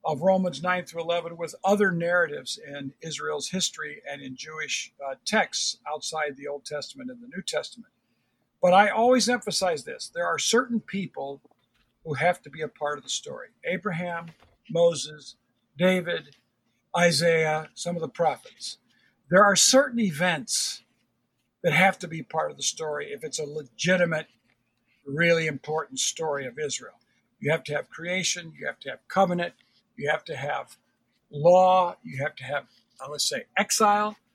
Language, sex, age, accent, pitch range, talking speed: English, male, 60-79, American, 145-200 Hz, 160 wpm